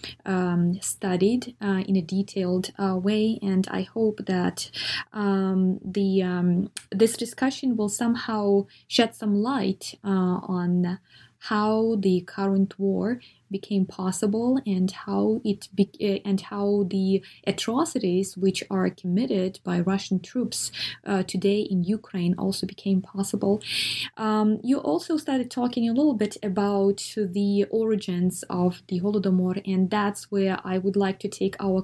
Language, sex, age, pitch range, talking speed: English, female, 20-39, 185-215 Hz, 140 wpm